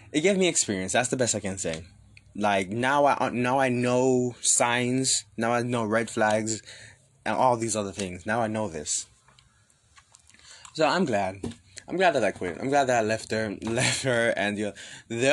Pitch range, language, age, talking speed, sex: 105-130 Hz, English, 20-39, 195 wpm, male